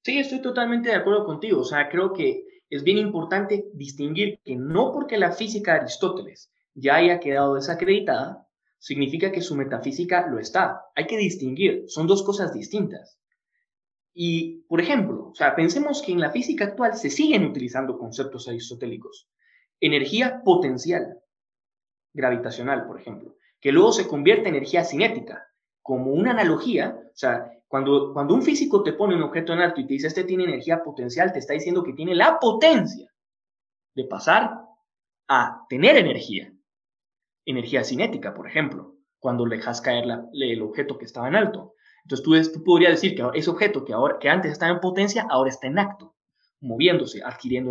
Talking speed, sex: 170 wpm, male